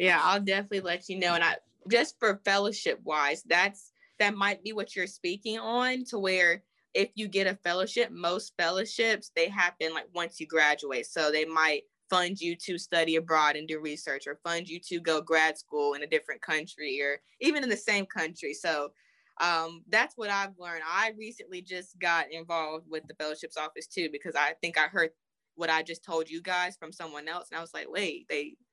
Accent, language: American, English